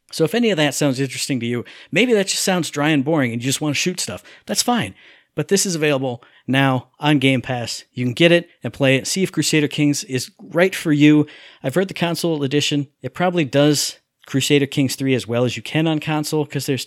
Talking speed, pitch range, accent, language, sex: 240 wpm, 125-150 Hz, American, English, male